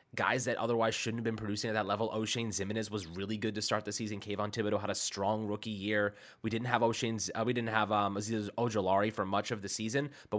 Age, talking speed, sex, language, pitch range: 20-39, 250 wpm, male, English, 100-120 Hz